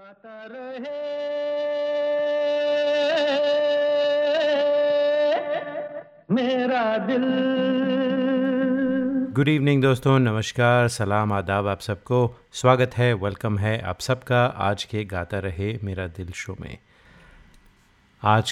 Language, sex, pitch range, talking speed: Hindi, male, 95-130 Hz, 85 wpm